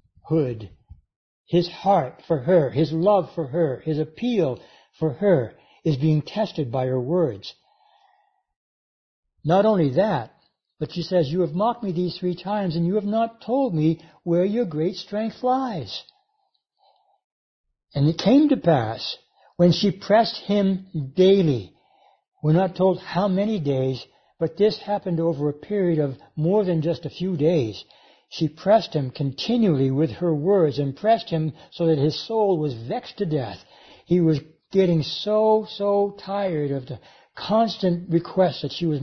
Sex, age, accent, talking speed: male, 60-79, American, 155 wpm